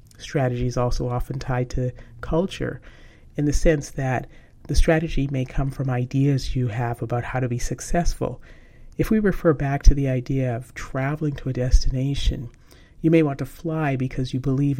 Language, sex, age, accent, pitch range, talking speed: English, male, 40-59, American, 125-145 Hz, 180 wpm